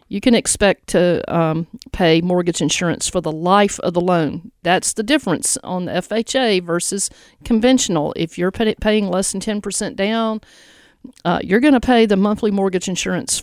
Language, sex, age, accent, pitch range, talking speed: English, female, 50-69, American, 170-210 Hz, 165 wpm